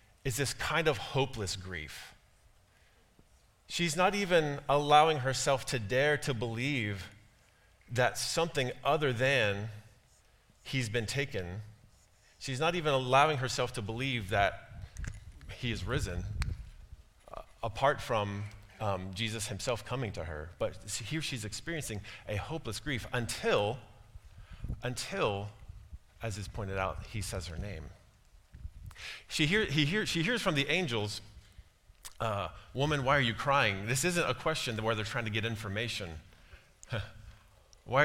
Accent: American